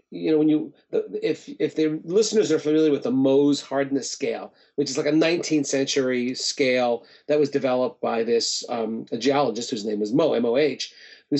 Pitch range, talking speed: 135-160 Hz, 190 wpm